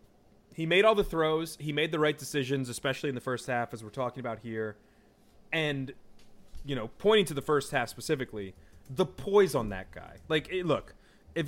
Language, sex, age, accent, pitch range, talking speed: English, male, 30-49, American, 120-160 Hz, 195 wpm